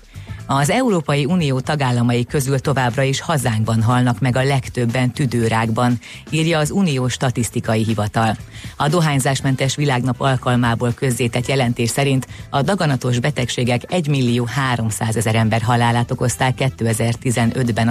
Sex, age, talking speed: female, 30-49, 115 wpm